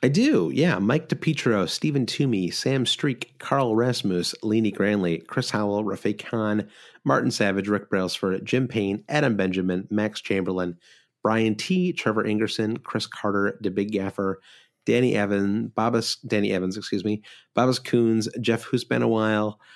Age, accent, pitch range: 30-49, American, 95-115 Hz